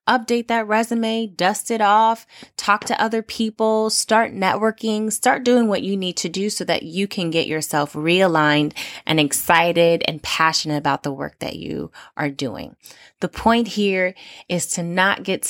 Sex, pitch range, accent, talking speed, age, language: female, 155-215 Hz, American, 170 wpm, 20-39, English